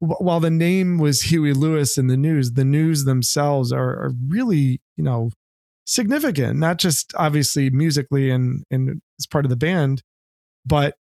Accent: American